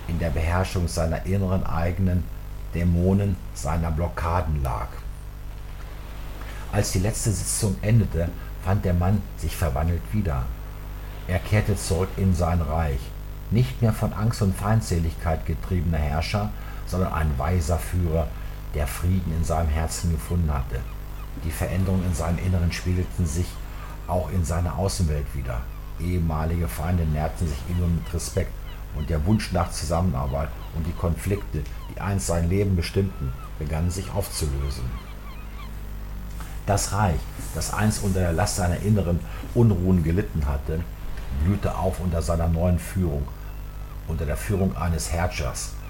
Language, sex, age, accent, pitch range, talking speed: German, male, 60-79, German, 80-95 Hz, 135 wpm